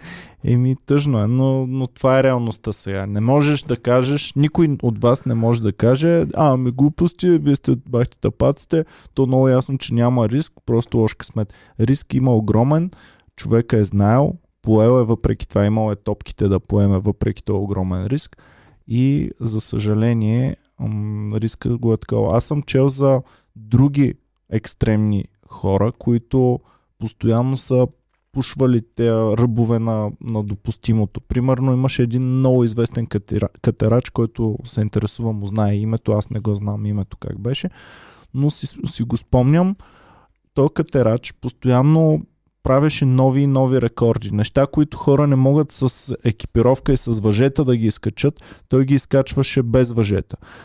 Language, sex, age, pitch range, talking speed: Bulgarian, male, 20-39, 110-135 Hz, 150 wpm